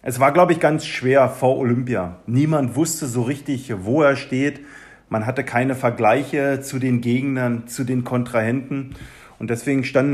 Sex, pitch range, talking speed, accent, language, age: male, 125-150 Hz, 165 wpm, German, German, 40-59